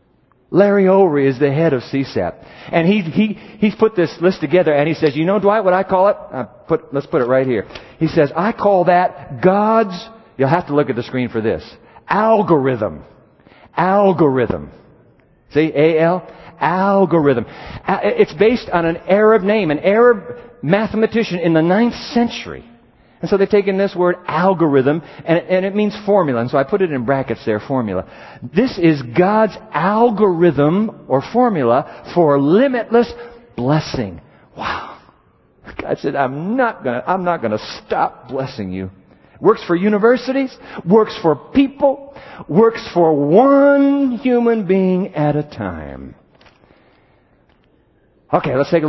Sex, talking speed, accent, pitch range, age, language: male, 150 wpm, American, 145-215 Hz, 50-69, English